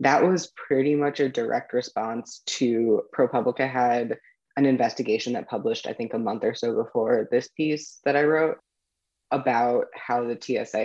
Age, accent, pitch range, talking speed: 20-39, American, 120-150 Hz, 165 wpm